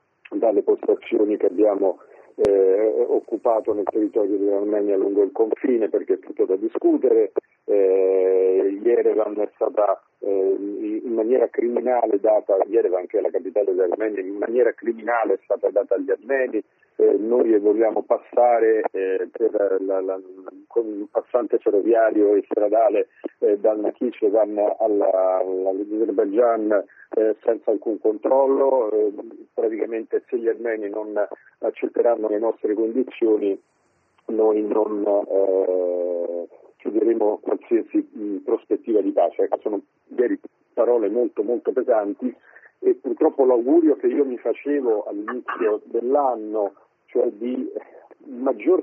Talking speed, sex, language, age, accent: 120 wpm, male, Italian, 40-59, native